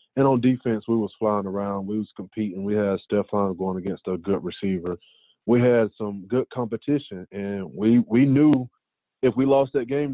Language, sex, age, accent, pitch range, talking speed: English, male, 20-39, American, 105-125 Hz, 190 wpm